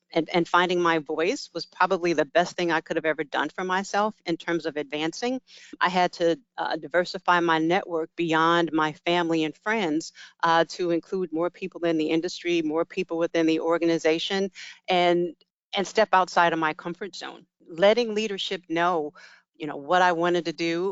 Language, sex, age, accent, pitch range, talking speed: English, female, 40-59, American, 165-190 Hz, 185 wpm